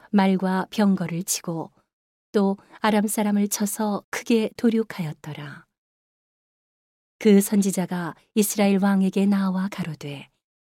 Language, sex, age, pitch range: Korean, female, 40-59, 185-210 Hz